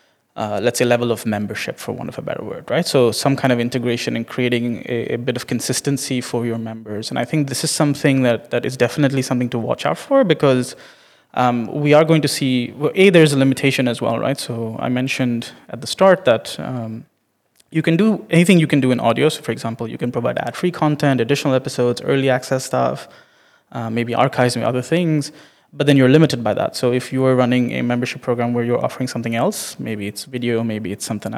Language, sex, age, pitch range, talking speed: English, male, 20-39, 120-140 Hz, 225 wpm